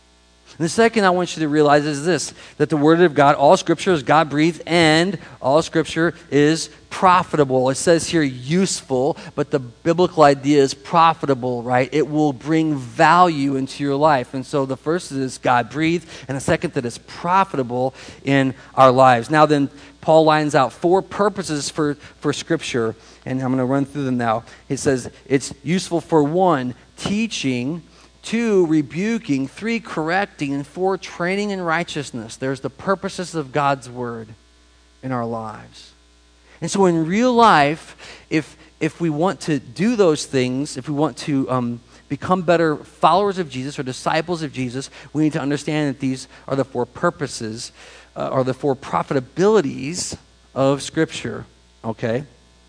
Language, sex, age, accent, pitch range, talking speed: English, male, 40-59, American, 130-165 Hz, 165 wpm